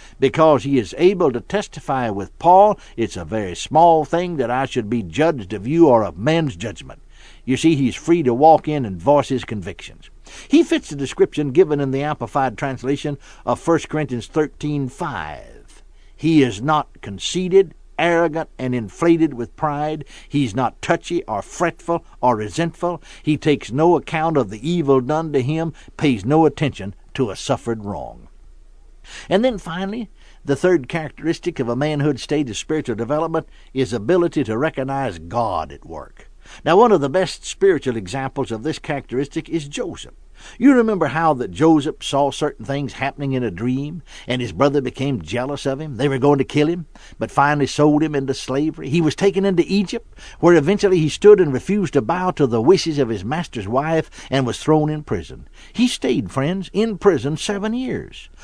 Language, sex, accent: English, male, American